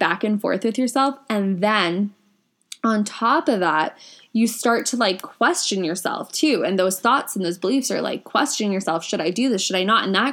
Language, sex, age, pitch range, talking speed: English, female, 10-29, 190-250 Hz, 215 wpm